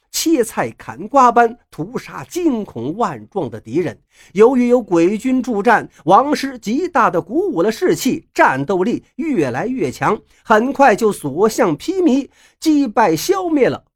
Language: Chinese